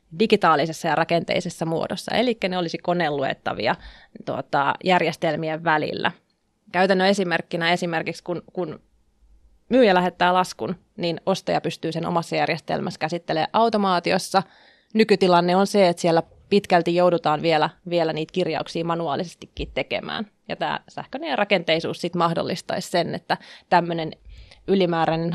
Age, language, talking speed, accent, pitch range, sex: 20-39, Finnish, 120 wpm, native, 165-195 Hz, female